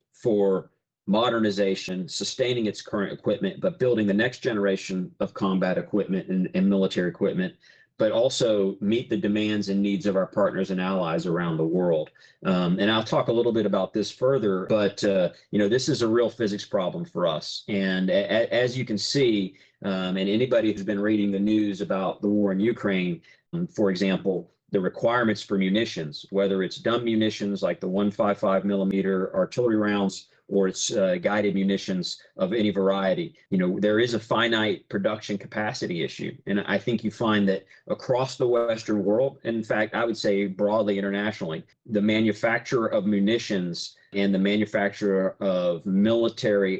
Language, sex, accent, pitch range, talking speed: English, male, American, 95-110 Hz, 175 wpm